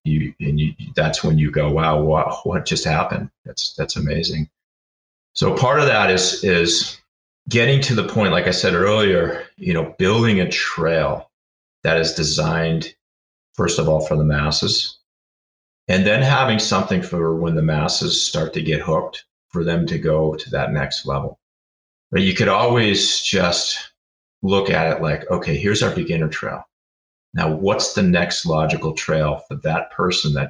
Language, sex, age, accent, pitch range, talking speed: English, male, 30-49, American, 75-95 Hz, 170 wpm